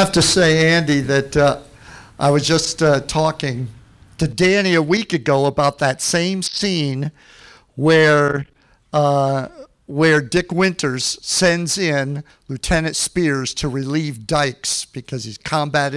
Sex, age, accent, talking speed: male, 50-69, American, 135 wpm